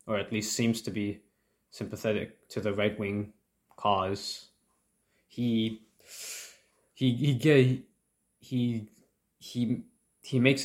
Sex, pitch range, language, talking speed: male, 105-125 Hz, English, 105 wpm